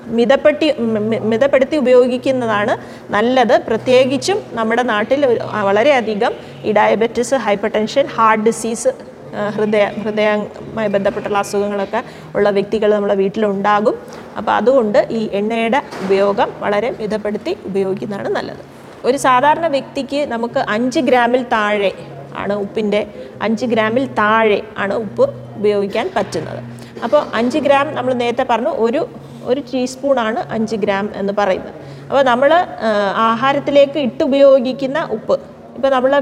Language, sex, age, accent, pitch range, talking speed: Malayalam, female, 30-49, native, 210-270 Hz, 110 wpm